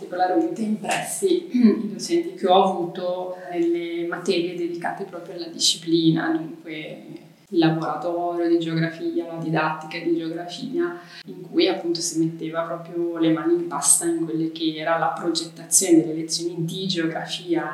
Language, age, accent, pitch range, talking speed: English, 20-39, Italian, 165-195 Hz, 140 wpm